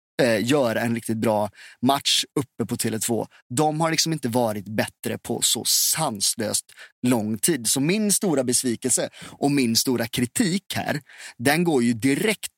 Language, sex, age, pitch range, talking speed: Swedish, male, 30-49, 115-140 Hz, 155 wpm